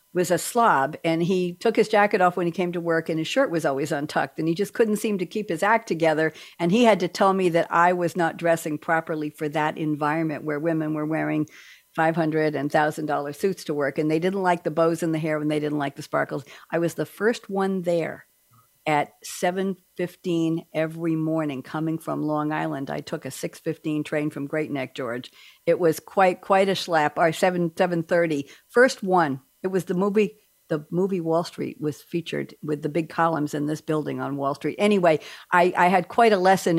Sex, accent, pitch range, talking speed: female, American, 155-190 Hz, 215 wpm